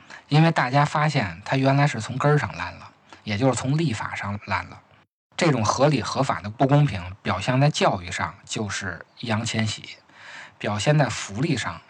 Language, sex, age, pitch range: Chinese, male, 20-39, 100-125 Hz